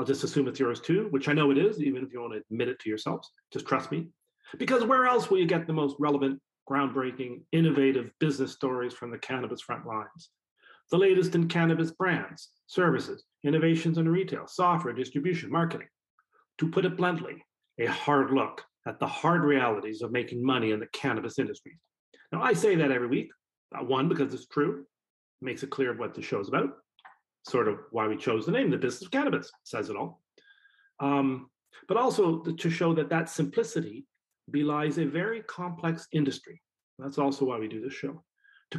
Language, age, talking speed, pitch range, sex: English, 40-59, 190 wpm, 130-170 Hz, male